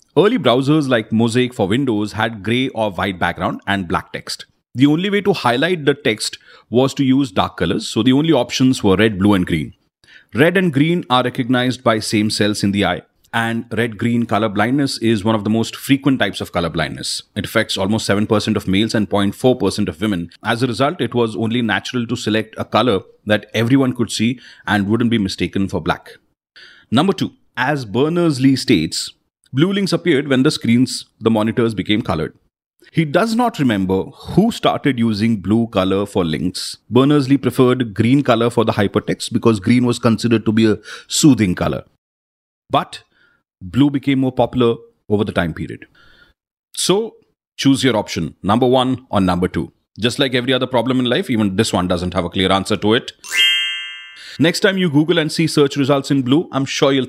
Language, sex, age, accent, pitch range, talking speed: Hindi, male, 30-49, native, 105-135 Hz, 195 wpm